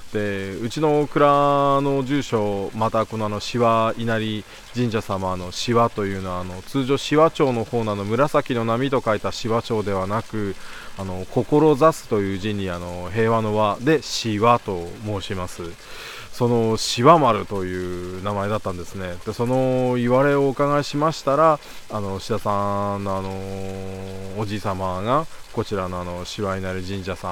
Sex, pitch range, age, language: male, 95-115 Hz, 20-39, Japanese